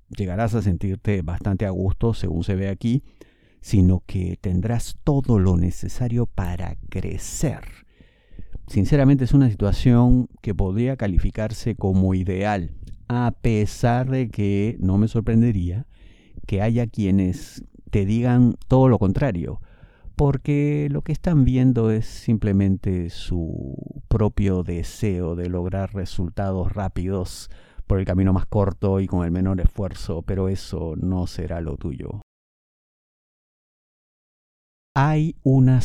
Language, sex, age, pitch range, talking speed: Spanish, male, 50-69, 95-115 Hz, 125 wpm